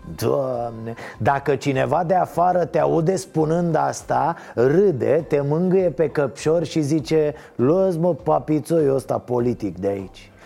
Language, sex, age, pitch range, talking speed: Romanian, male, 30-49, 140-180 Hz, 125 wpm